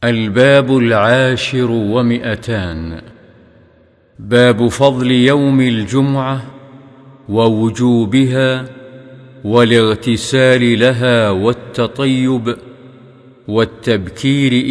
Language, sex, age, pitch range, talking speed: Arabic, male, 50-69, 115-130 Hz, 50 wpm